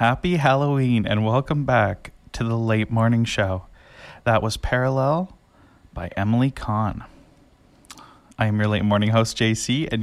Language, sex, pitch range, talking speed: English, male, 110-140 Hz, 145 wpm